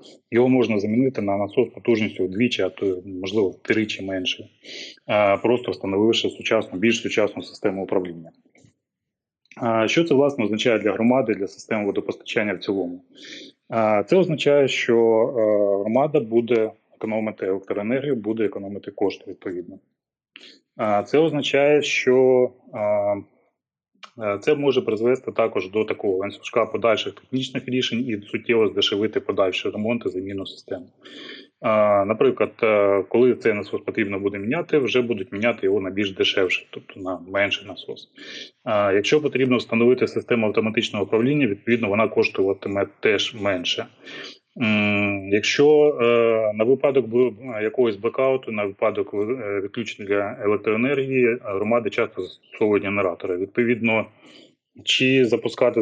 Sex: male